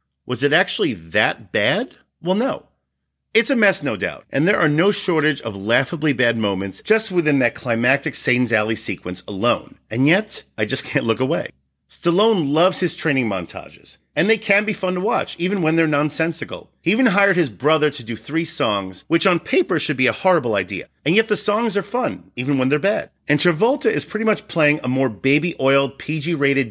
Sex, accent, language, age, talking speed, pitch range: male, American, English, 40-59, 200 wpm, 110-165 Hz